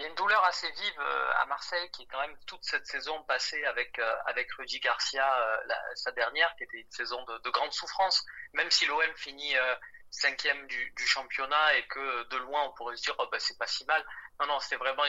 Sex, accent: male, French